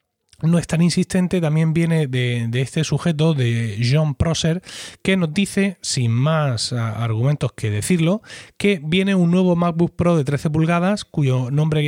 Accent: Spanish